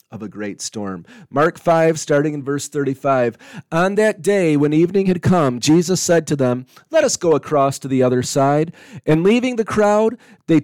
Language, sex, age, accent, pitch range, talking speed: English, male, 30-49, American, 140-190 Hz, 190 wpm